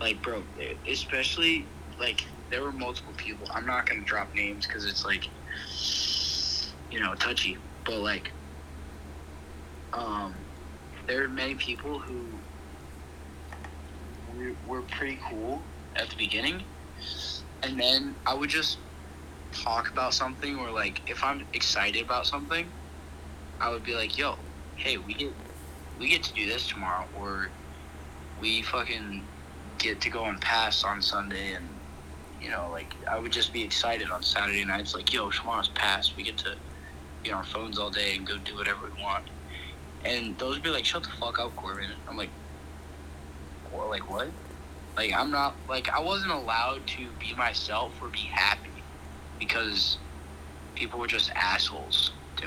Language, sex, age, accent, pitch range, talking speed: English, male, 20-39, American, 75-80 Hz, 160 wpm